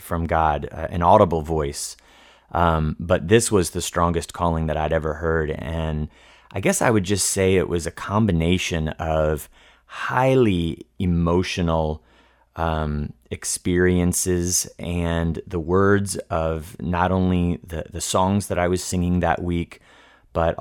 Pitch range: 80-95 Hz